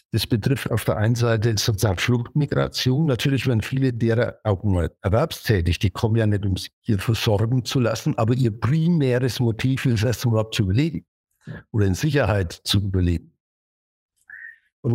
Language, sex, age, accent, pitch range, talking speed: German, male, 60-79, German, 110-135 Hz, 165 wpm